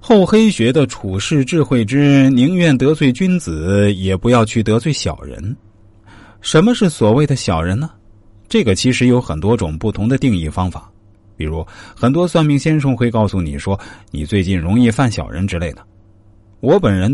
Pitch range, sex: 90-120 Hz, male